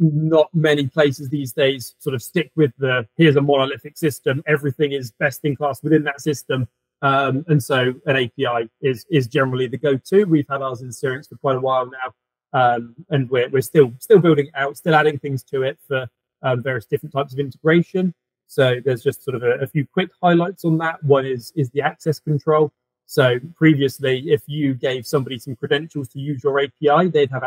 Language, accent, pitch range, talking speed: English, British, 130-150 Hz, 210 wpm